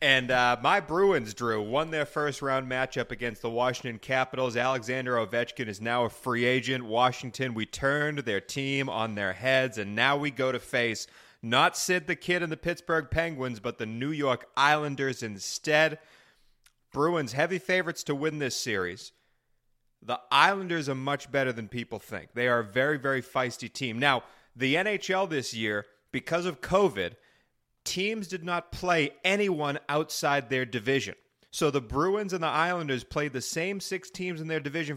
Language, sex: English, male